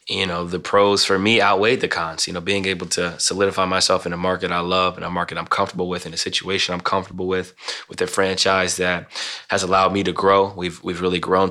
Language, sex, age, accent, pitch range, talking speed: English, male, 20-39, American, 90-95 Hz, 240 wpm